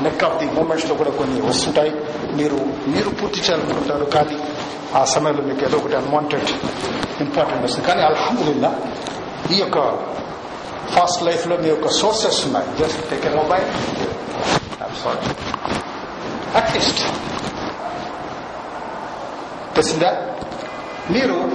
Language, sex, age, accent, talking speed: Telugu, male, 60-79, native, 110 wpm